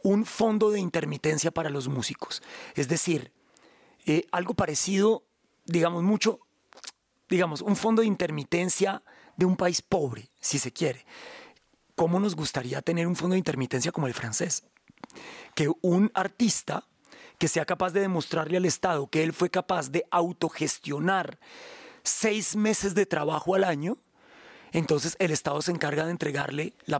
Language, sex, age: Spanish, male, 30-49